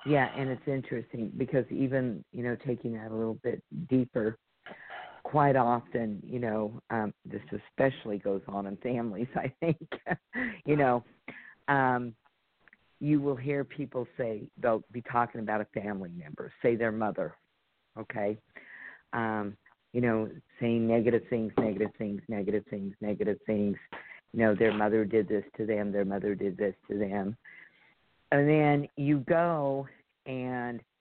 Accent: American